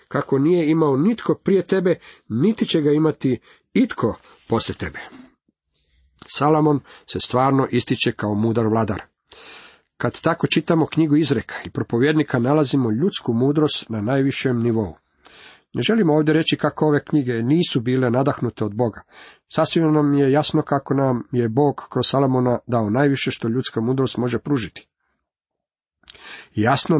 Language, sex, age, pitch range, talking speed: Croatian, male, 50-69, 115-150 Hz, 140 wpm